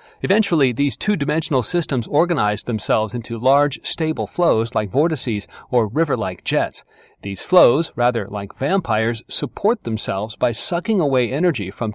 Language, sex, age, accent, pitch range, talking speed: English, male, 40-59, American, 115-160 Hz, 135 wpm